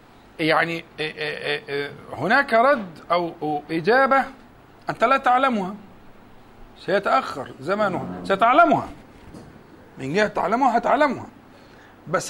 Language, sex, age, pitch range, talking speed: Arabic, male, 50-69, 170-240 Hz, 80 wpm